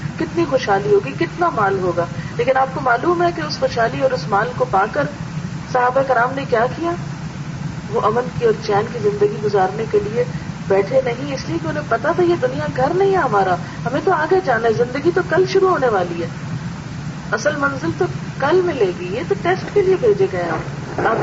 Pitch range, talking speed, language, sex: 165-250 Hz, 210 wpm, Urdu, female